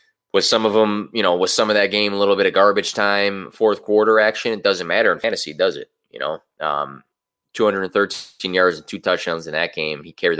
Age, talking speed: 20-39, 250 wpm